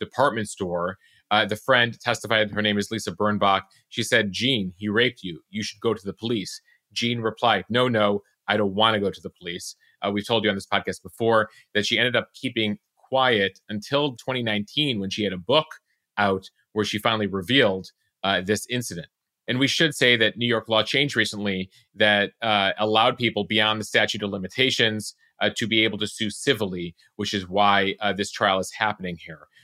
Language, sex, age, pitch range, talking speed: English, male, 30-49, 100-120 Hz, 200 wpm